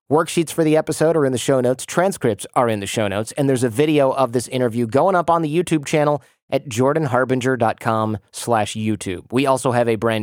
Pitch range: 115-145 Hz